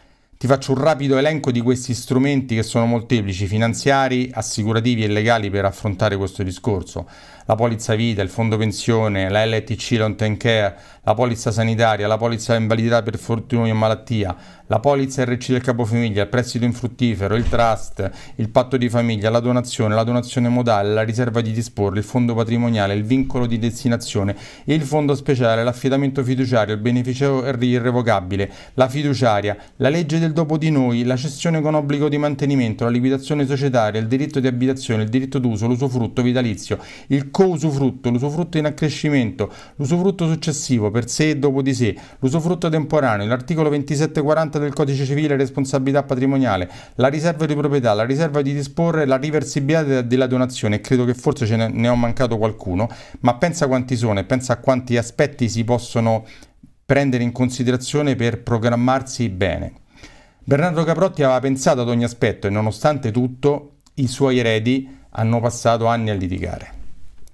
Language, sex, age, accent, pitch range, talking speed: Italian, male, 40-59, native, 115-140 Hz, 160 wpm